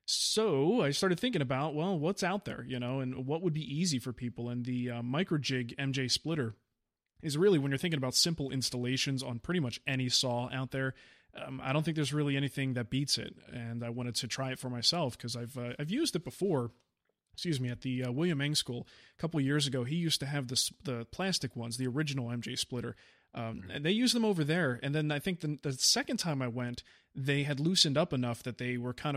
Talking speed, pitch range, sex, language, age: 240 wpm, 120-150 Hz, male, English, 30-49